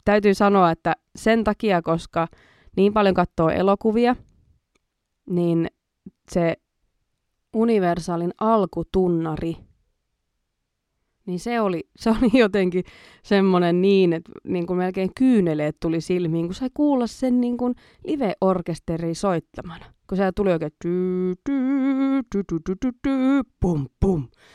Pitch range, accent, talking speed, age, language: 170-220 Hz, native, 100 wpm, 20-39, Finnish